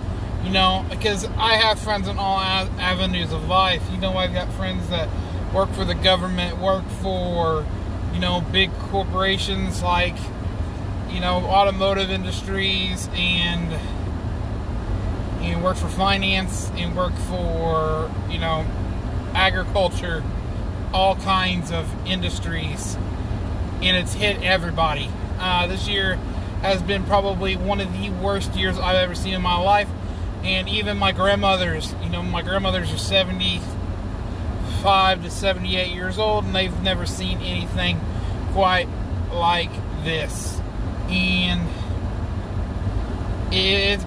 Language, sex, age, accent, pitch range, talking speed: English, male, 20-39, American, 90-95 Hz, 125 wpm